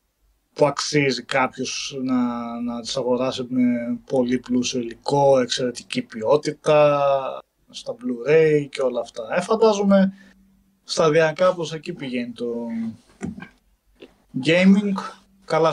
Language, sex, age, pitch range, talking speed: Greek, male, 20-39, 130-180 Hz, 100 wpm